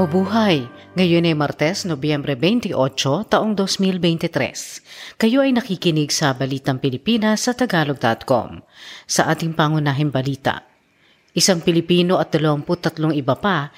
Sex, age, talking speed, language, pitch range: female, 40-59, 115 wpm, Filipino, 145-195 Hz